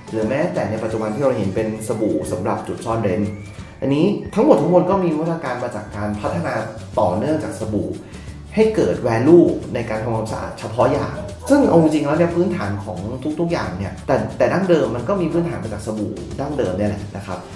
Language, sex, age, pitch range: Thai, male, 30-49, 105-160 Hz